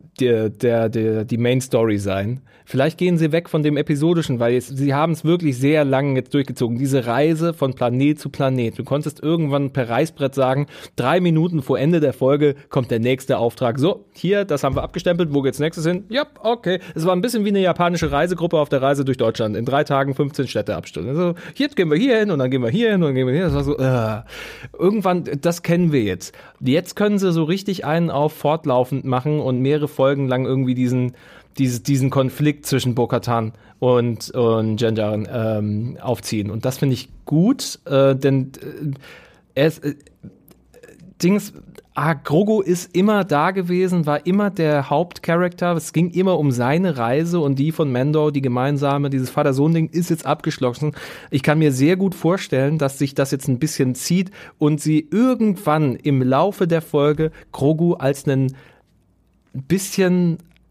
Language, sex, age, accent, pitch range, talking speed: German, male, 30-49, German, 130-170 Hz, 190 wpm